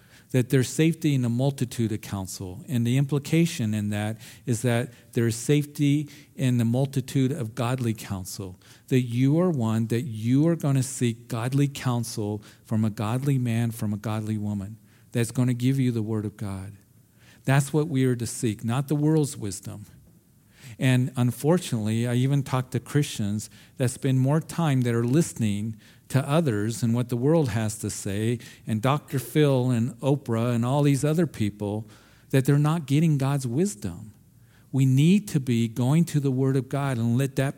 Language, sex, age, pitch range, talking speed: English, male, 50-69, 115-145 Hz, 180 wpm